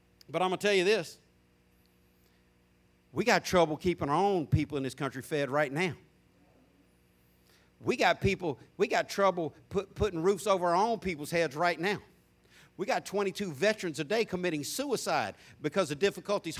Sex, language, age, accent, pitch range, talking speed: male, English, 60-79, American, 120-180 Hz, 165 wpm